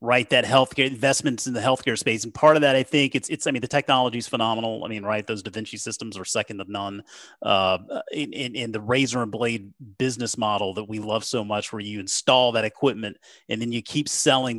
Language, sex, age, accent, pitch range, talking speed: English, male, 30-49, American, 115-145 Hz, 235 wpm